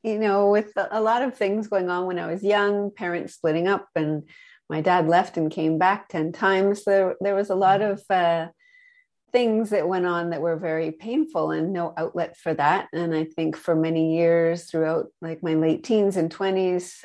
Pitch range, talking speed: 160-185 Hz, 210 wpm